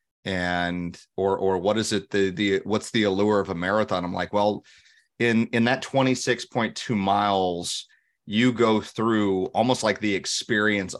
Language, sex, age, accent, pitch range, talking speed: English, male, 30-49, American, 100-125 Hz, 160 wpm